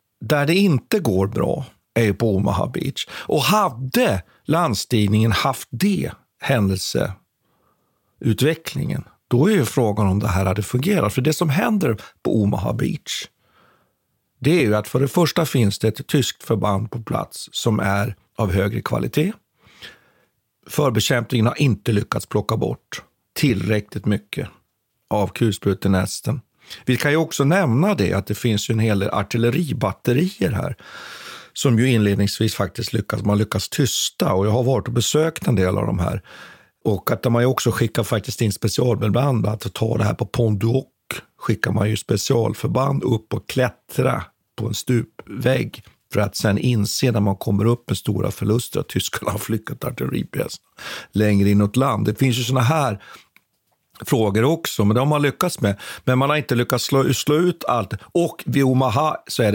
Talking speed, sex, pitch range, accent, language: 170 wpm, male, 105-135 Hz, native, Swedish